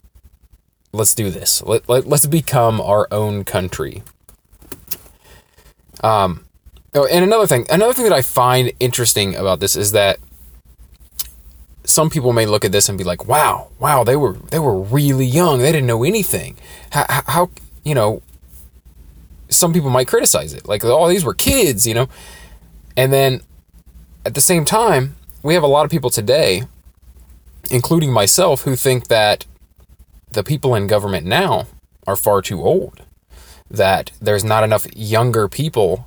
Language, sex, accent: English, male, American